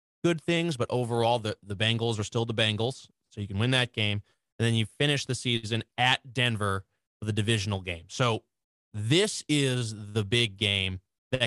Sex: male